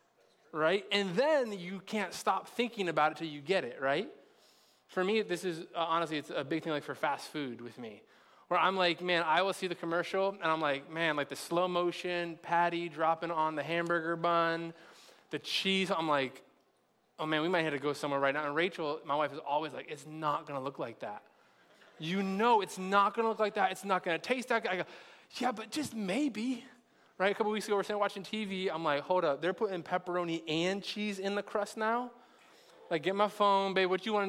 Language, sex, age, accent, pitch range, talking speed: English, male, 20-39, American, 155-195 Hz, 235 wpm